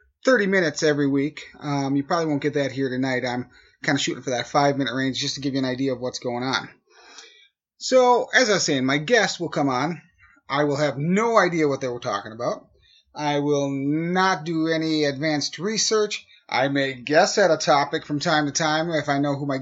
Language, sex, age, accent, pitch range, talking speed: English, male, 30-49, American, 145-215 Hz, 220 wpm